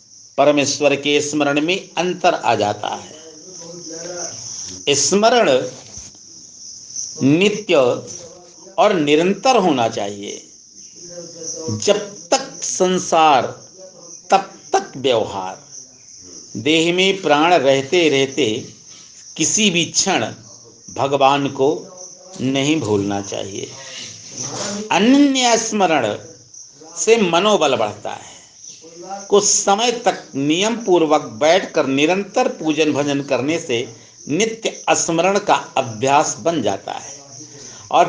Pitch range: 135-190 Hz